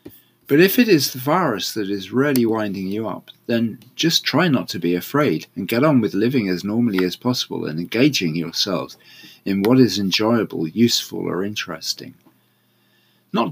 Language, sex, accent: English, male, British